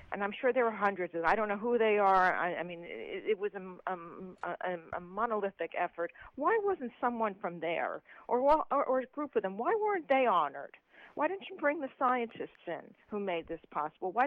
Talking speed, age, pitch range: 225 wpm, 50-69, 175-250 Hz